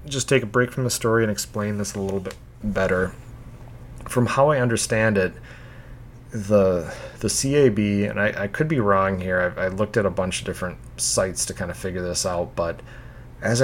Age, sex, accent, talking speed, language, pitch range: 30-49, male, American, 200 wpm, English, 95-125 Hz